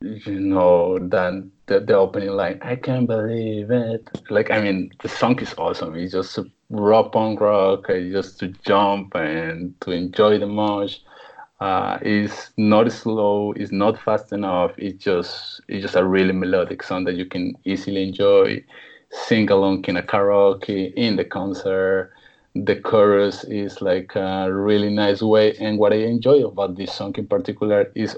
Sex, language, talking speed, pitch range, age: male, English, 170 wpm, 95-110 Hz, 30-49